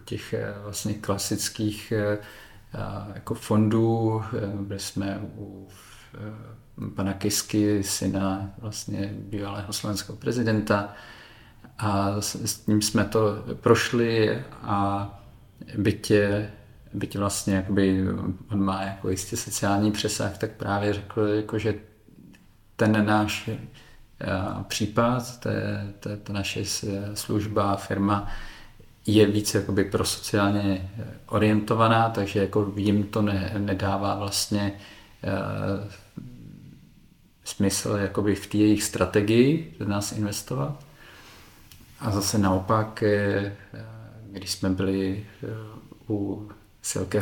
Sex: male